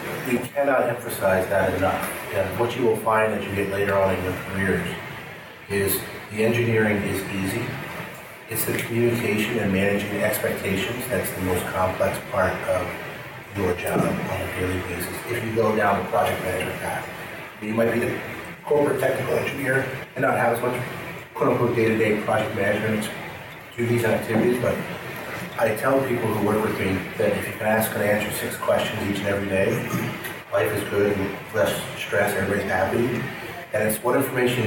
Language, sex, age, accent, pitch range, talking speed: English, male, 30-49, American, 100-120 Hz, 175 wpm